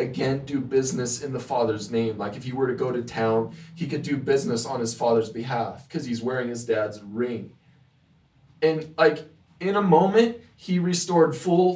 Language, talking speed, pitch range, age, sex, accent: English, 190 wpm, 120-155 Hz, 20-39, male, American